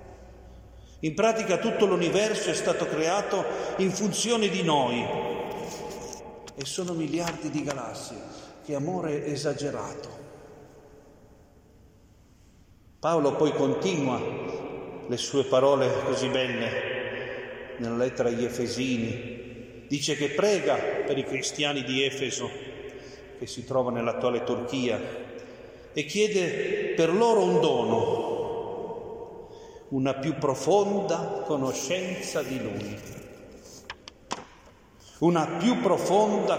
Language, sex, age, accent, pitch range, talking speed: Italian, male, 40-59, native, 130-185 Hz, 95 wpm